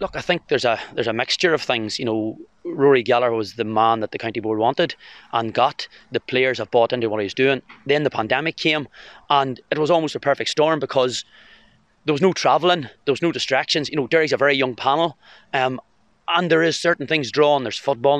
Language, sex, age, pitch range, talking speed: English, male, 30-49, 125-150 Hz, 225 wpm